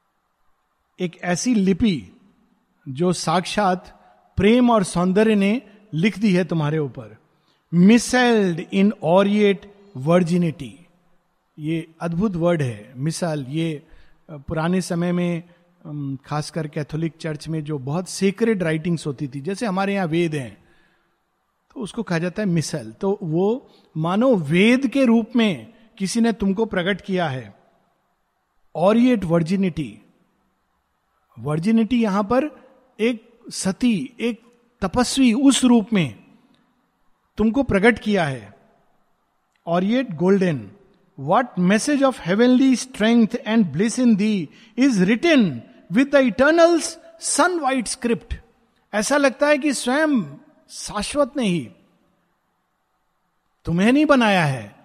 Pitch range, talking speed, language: 170-235 Hz, 115 wpm, Hindi